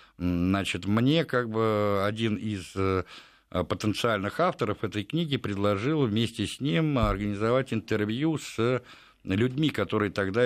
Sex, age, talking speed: male, 60-79, 115 wpm